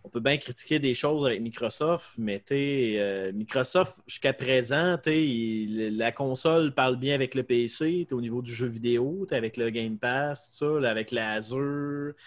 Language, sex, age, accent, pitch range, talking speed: French, male, 30-49, Canadian, 115-150 Hz, 190 wpm